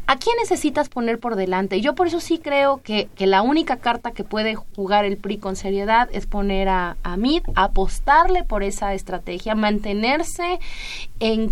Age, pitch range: 30-49, 190-235 Hz